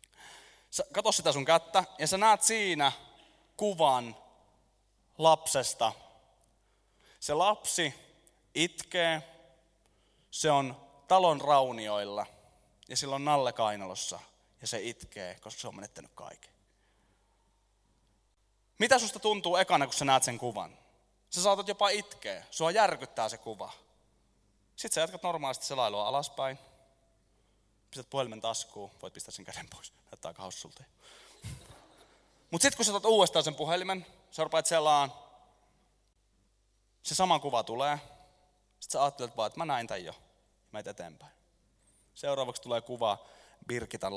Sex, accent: male, native